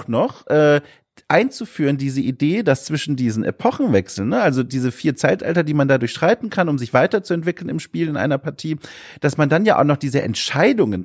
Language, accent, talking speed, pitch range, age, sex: German, German, 190 wpm, 135-175 Hz, 30-49, male